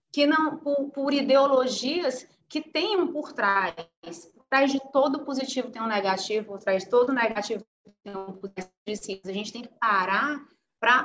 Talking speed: 175 wpm